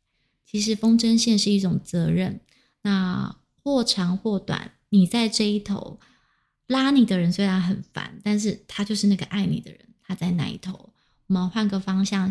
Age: 20-39